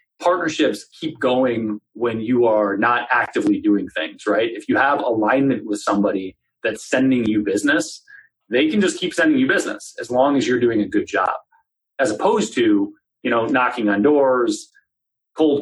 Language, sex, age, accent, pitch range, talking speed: English, male, 30-49, American, 110-175 Hz, 175 wpm